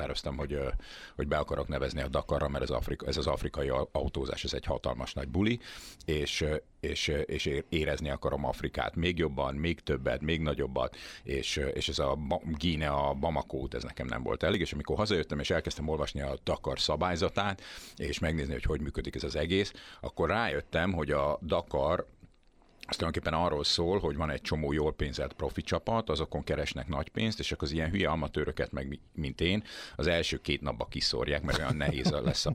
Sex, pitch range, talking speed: male, 70-85 Hz, 180 wpm